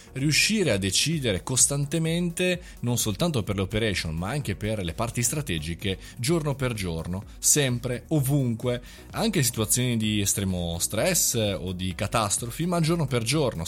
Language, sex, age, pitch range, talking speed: Italian, male, 20-39, 95-135 Hz, 145 wpm